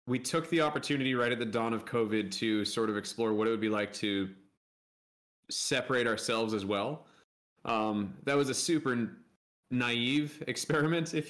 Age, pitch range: 20-39, 100-120 Hz